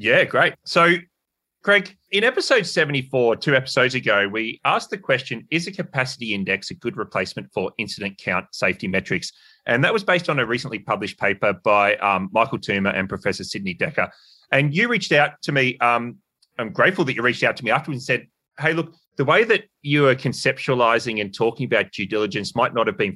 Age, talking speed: 30-49, 200 wpm